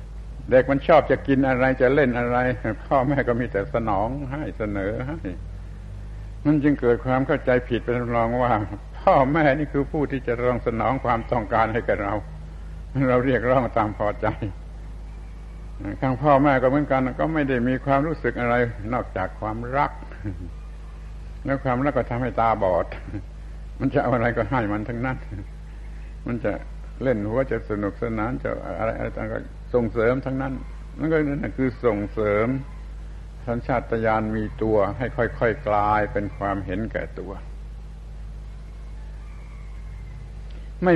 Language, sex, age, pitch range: Thai, male, 70-89, 100-130 Hz